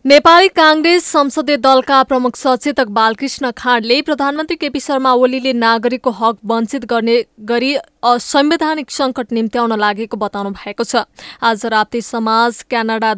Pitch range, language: 220-260 Hz, English